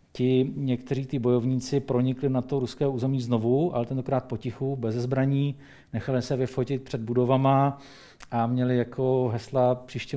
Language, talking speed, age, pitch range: Czech, 150 wpm, 40-59, 120-140 Hz